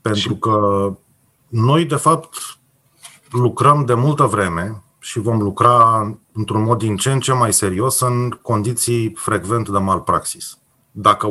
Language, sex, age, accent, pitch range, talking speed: Romanian, male, 30-49, native, 105-140 Hz, 140 wpm